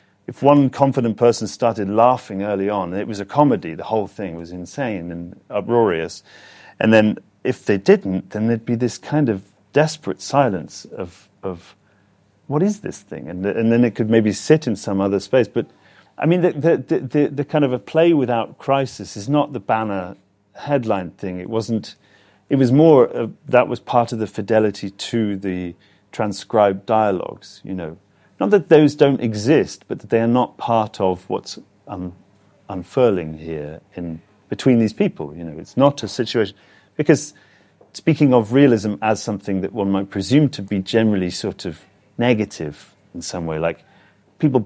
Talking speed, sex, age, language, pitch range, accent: 180 wpm, male, 40-59, English, 100-125 Hz, British